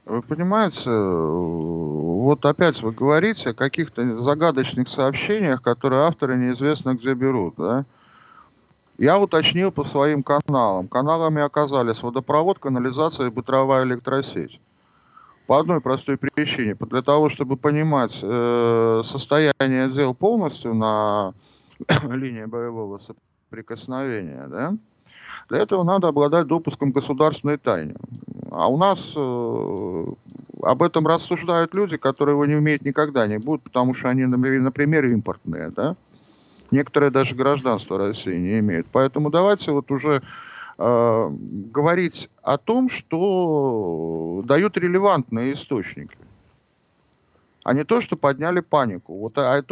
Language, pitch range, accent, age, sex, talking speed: Russian, 125-160 Hz, native, 50-69, male, 120 wpm